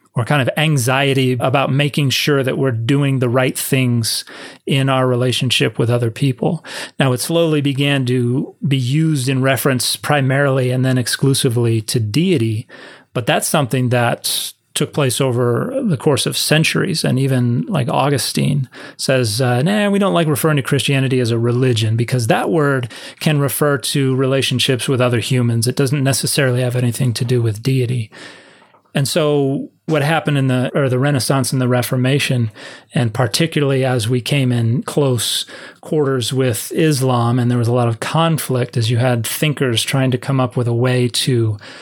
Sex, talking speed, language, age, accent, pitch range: male, 175 wpm, English, 30-49, American, 125-145 Hz